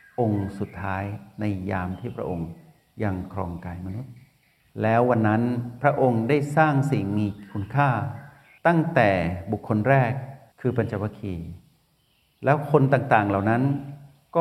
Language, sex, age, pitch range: Thai, male, 60-79, 95-130 Hz